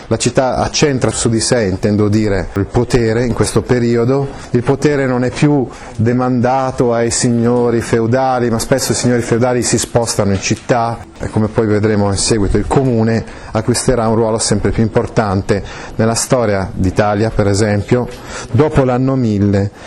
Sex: male